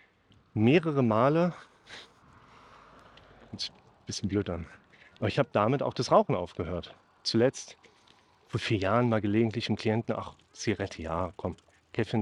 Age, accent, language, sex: 40-59, German, German, male